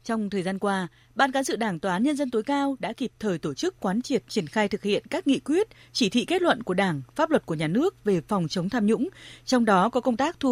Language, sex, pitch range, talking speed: Vietnamese, female, 190-260 Hz, 285 wpm